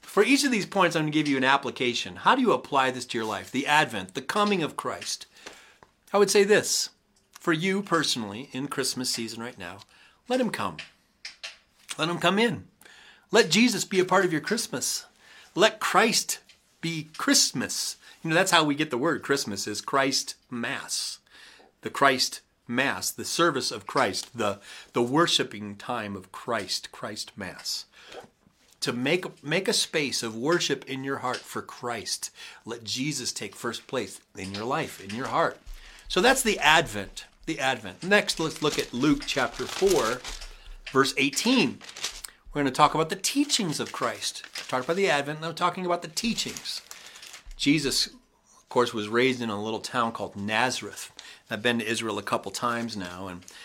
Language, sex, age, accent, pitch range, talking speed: English, male, 40-59, American, 115-170 Hz, 180 wpm